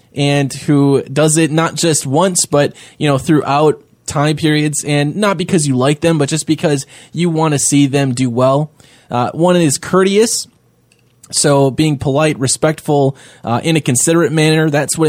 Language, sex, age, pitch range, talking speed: English, male, 20-39, 130-160 Hz, 175 wpm